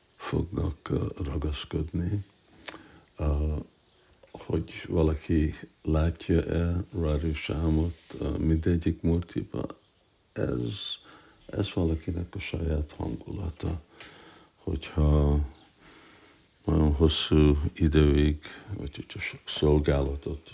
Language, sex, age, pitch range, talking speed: Hungarian, male, 60-79, 75-85 Hz, 60 wpm